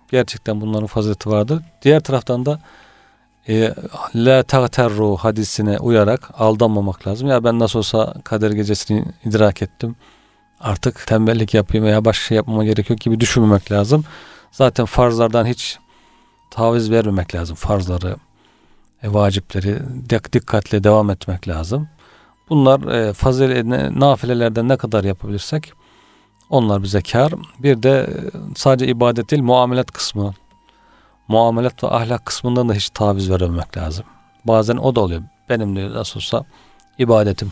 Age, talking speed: 40-59, 130 wpm